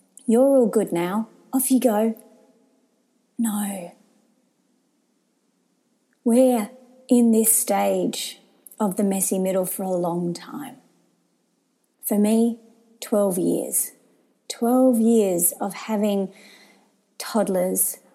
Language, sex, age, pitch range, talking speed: English, female, 30-49, 195-240 Hz, 95 wpm